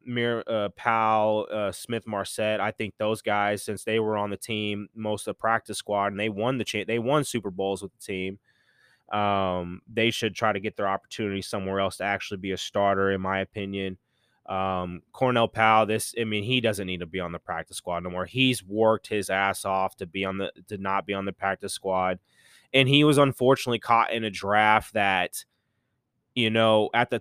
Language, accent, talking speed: English, American, 215 wpm